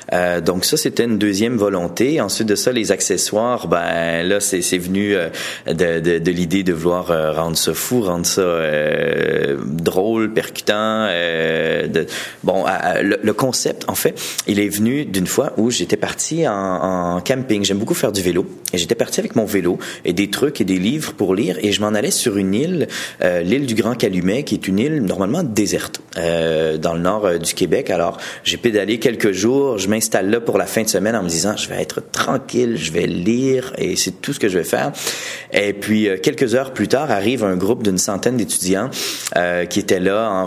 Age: 30-49